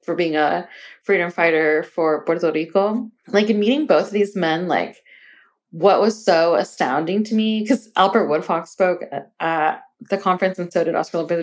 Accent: American